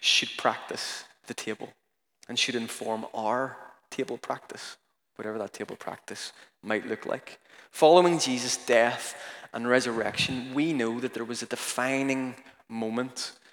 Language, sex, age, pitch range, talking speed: English, male, 20-39, 115-130 Hz, 135 wpm